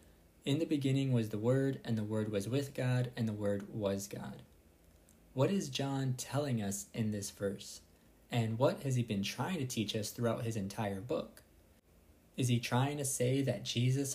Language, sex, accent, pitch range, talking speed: English, male, American, 110-135 Hz, 190 wpm